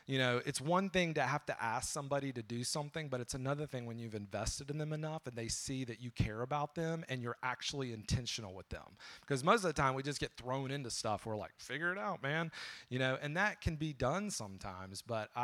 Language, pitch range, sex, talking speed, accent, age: English, 115-145 Hz, male, 245 wpm, American, 30-49